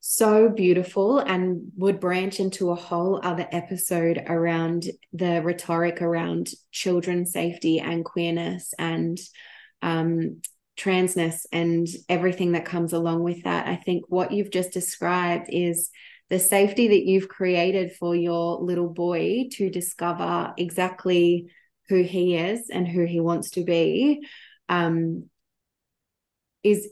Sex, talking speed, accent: female, 130 wpm, Australian